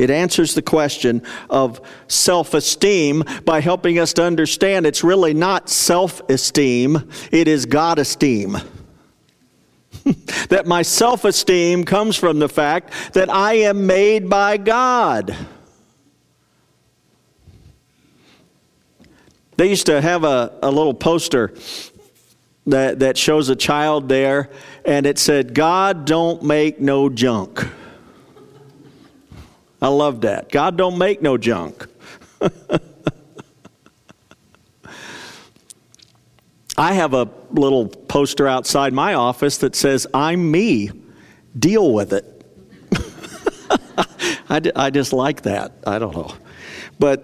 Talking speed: 110 wpm